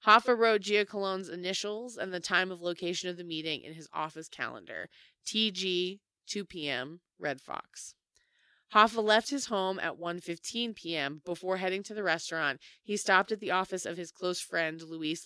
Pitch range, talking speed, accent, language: 165-205 Hz, 170 wpm, American, English